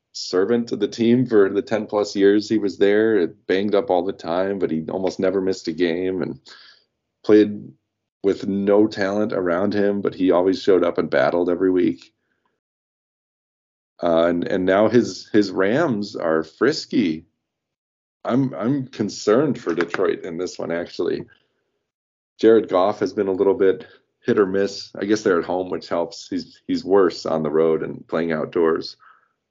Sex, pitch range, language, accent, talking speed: male, 90-110 Hz, English, American, 175 wpm